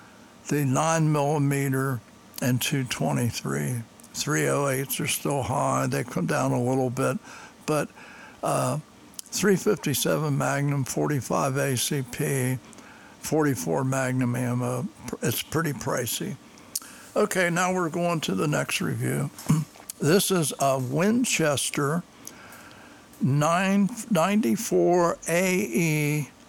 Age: 60-79